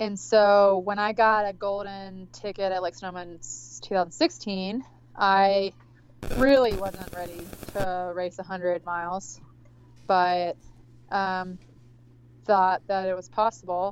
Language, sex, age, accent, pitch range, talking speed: English, female, 20-39, American, 130-200 Hz, 115 wpm